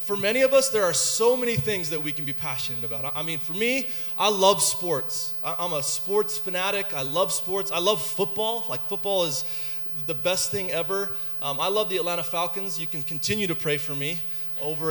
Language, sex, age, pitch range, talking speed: English, male, 20-39, 170-245 Hz, 215 wpm